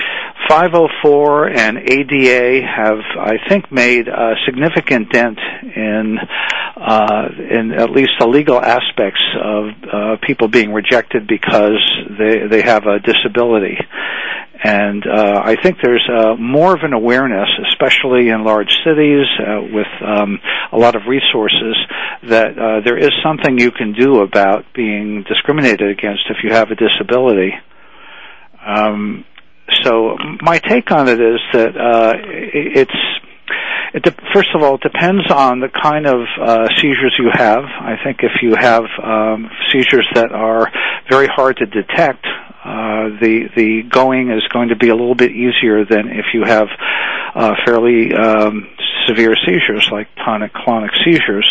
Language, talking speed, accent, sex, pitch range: English, 155 wpm, American, male, 110-130 Hz